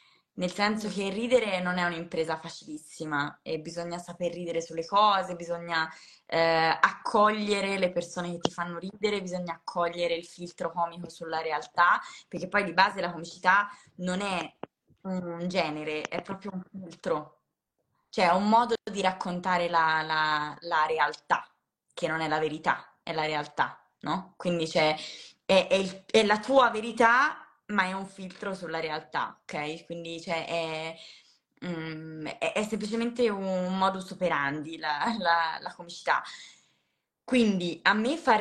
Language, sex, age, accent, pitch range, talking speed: Italian, female, 20-39, native, 165-195 Hz, 155 wpm